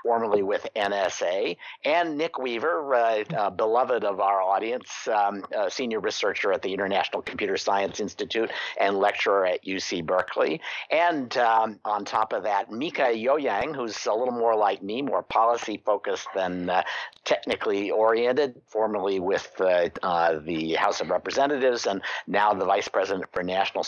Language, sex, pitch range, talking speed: English, male, 105-135 Hz, 160 wpm